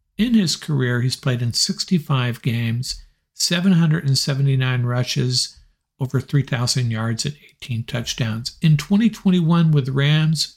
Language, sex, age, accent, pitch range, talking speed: English, male, 50-69, American, 125-150 Hz, 115 wpm